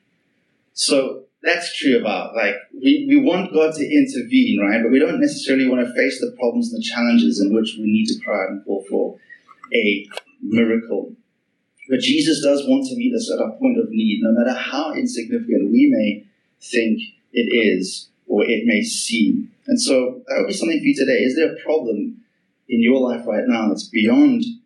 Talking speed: 195 wpm